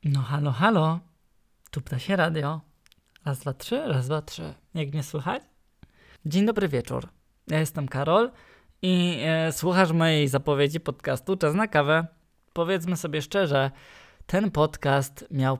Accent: native